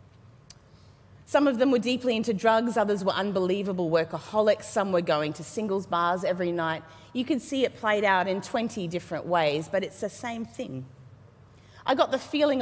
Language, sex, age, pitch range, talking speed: English, female, 30-49, 160-235 Hz, 180 wpm